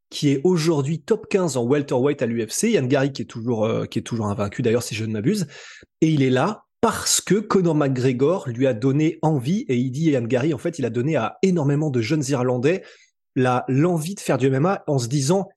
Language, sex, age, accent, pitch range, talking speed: French, male, 20-39, French, 135-175 Hz, 230 wpm